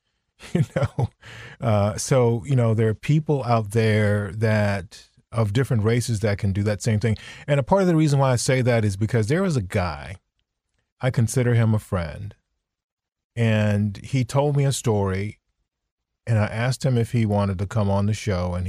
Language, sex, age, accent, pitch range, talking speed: English, male, 40-59, American, 105-130 Hz, 195 wpm